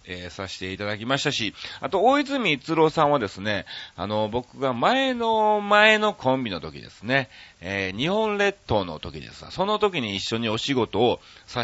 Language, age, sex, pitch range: Japanese, 40-59, male, 95-145 Hz